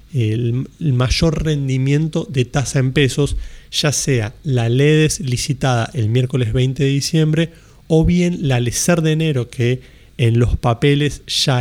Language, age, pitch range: Spanish, 30-49, 130-160 Hz